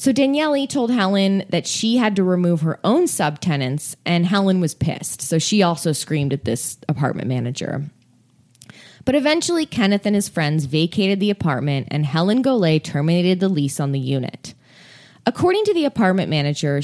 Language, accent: English, American